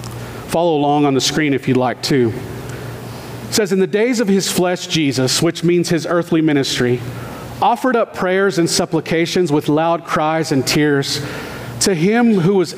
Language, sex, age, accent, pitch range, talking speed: English, male, 40-59, American, 130-190 Hz, 175 wpm